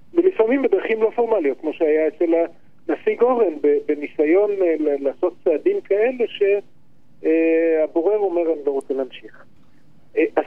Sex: male